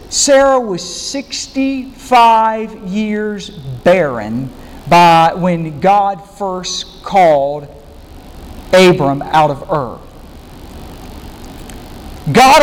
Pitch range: 185-265 Hz